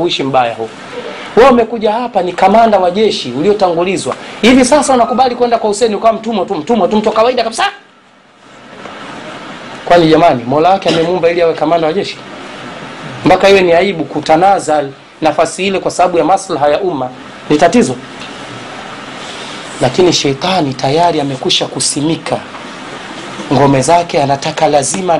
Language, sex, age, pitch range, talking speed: Swahili, male, 40-59, 140-185 Hz, 140 wpm